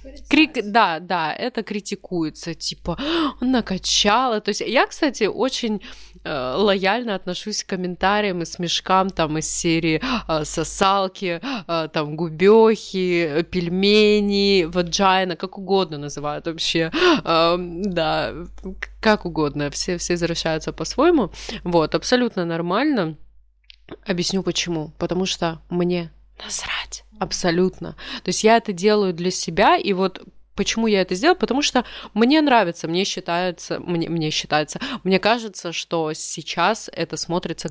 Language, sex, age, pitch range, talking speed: Russian, female, 20-39, 165-215 Hz, 130 wpm